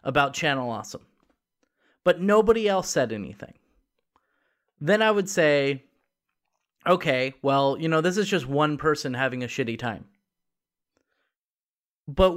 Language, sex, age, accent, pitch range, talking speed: English, male, 30-49, American, 140-175 Hz, 125 wpm